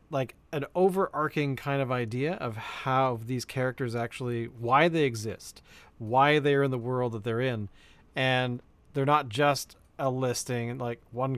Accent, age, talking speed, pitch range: American, 40-59, 160 wpm, 120-145 Hz